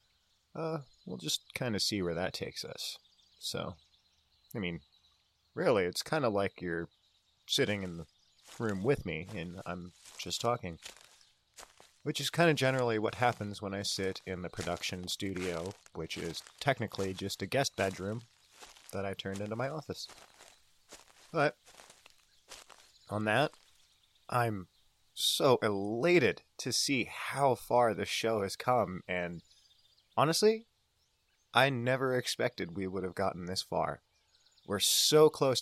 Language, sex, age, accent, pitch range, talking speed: English, male, 30-49, American, 95-120 Hz, 140 wpm